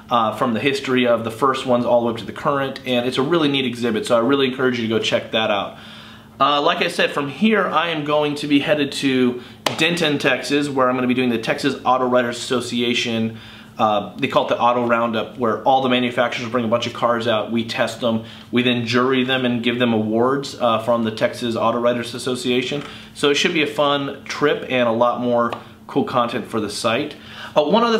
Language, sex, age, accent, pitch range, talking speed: English, male, 30-49, American, 120-145 Hz, 240 wpm